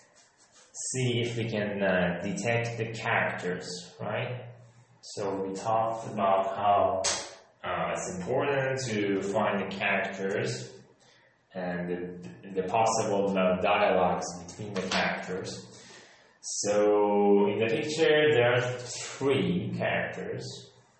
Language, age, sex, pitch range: Persian, 20-39, male, 95-125 Hz